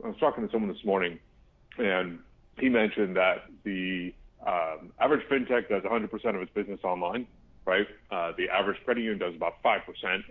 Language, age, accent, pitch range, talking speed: English, 30-49, American, 95-125 Hz, 175 wpm